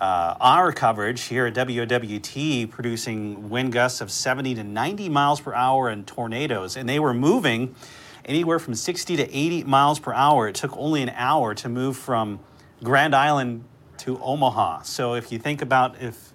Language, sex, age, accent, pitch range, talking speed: English, male, 40-59, American, 120-140 Hz, 175 wpm